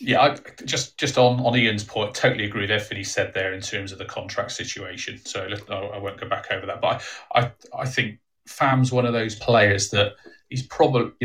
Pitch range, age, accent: 100-120 Hz, 30-49, British